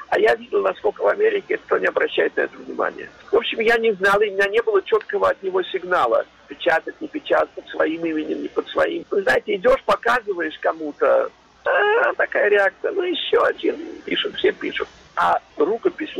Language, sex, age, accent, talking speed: Russian, male, 50-69, native, 190 wpm